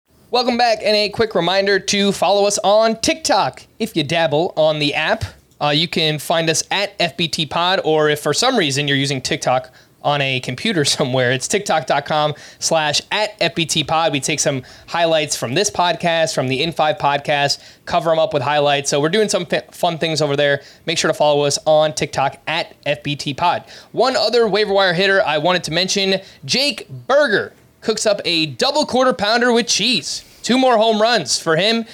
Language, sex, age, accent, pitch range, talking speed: English, male, 20-39, American, 145-205 Hz, 195 wpm